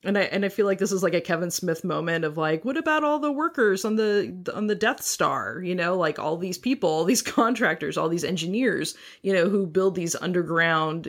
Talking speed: 240 wpm